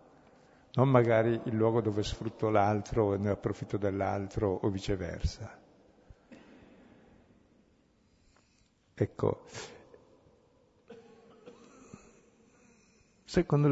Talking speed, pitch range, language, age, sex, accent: 65 wpm, 105-130 Hz, Italian, 50-69, male, native